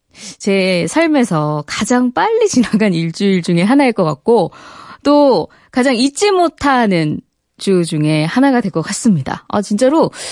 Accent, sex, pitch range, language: native, female, 185-290 Hz, Korean